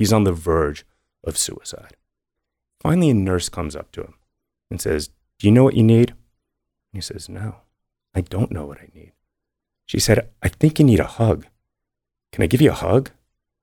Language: English